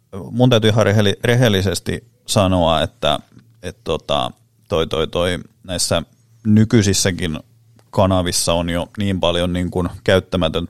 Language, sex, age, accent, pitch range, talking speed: Finnish, male, 30-49, native, 90-115 Hz, 110 wpm